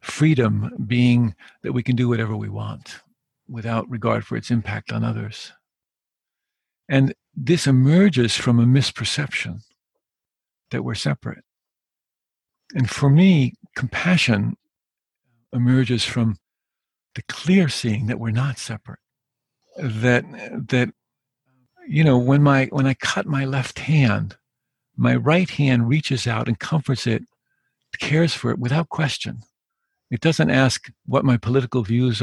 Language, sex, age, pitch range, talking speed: English, male, 50-69, 115-140 Hz, 130 wpm